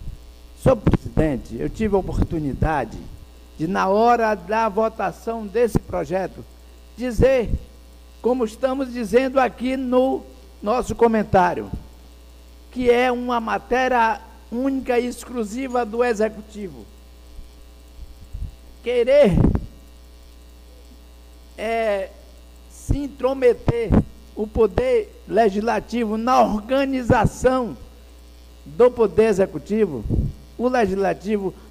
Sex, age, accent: male, 60-79, Brazilian